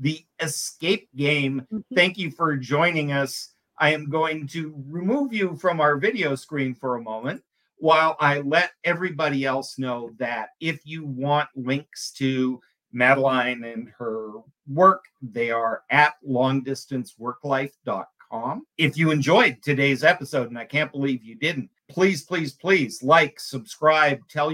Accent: American